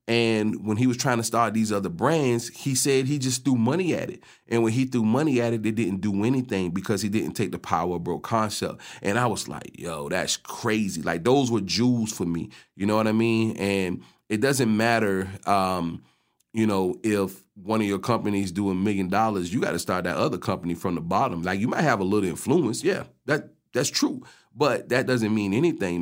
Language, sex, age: English, male, 30-49